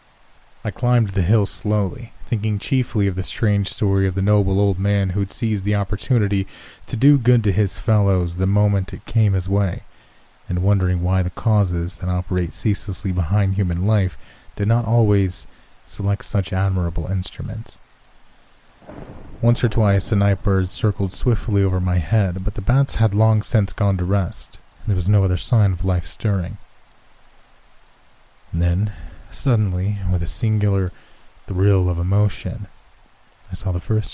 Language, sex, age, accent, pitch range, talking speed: English, male, 30-49, American, 90-105 Hz, 160 wpm